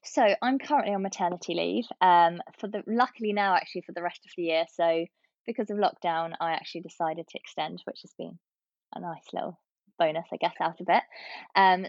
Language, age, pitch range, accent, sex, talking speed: English, 20-39, 175-215 Hz, British, female, 200 wpm